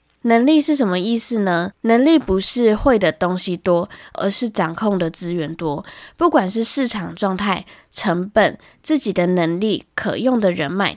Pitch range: 175-220 Hz